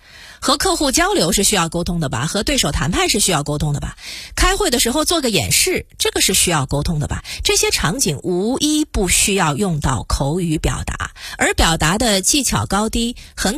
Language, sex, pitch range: Chinese, female, 155-235 Hz